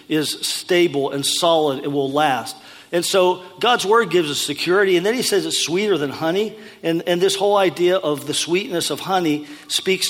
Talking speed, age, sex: 195 wpm, 50-69, male